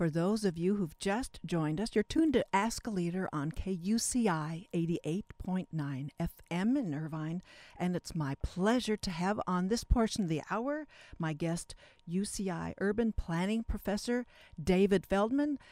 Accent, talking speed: American, 155 wpm